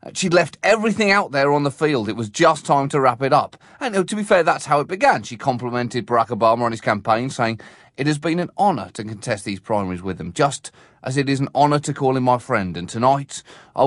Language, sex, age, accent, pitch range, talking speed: English, male, 30-49, British, 125-190 Hz, 245 wpm